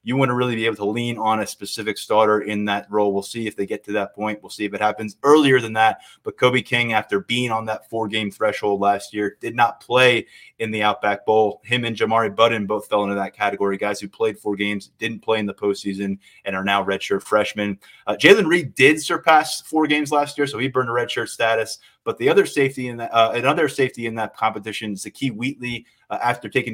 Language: English